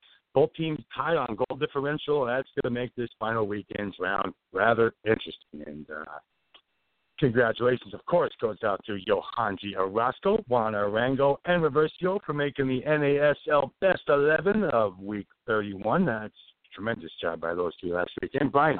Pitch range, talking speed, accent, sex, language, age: 110-155 Hz, 160 wpm, American, male, English, 60-79